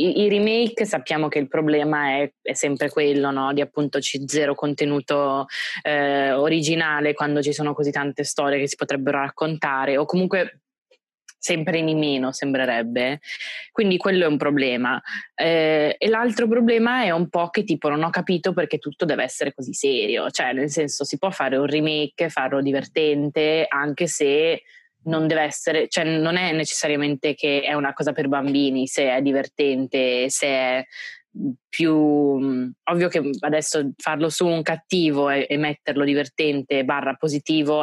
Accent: native